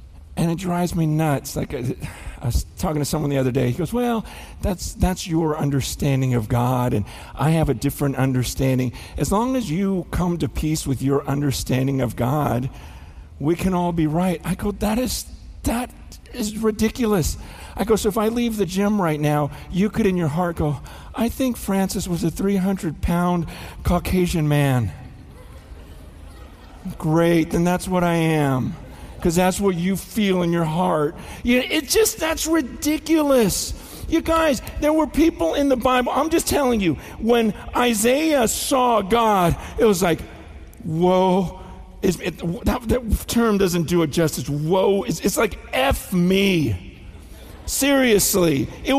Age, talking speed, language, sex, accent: 50-69, 160 wpm, English, male, American